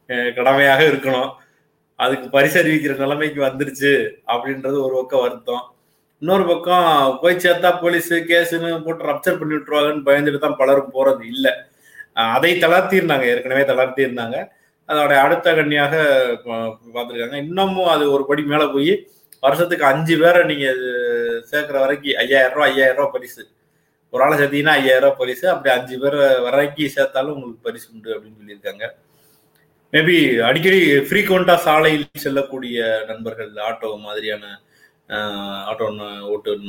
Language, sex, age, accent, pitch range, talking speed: Tamil, male, 30-49, native, 120-155 Hz, 130 wpm